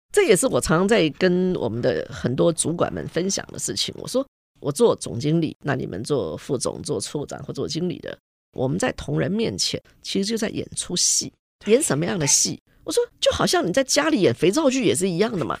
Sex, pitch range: female, 190-295 Hz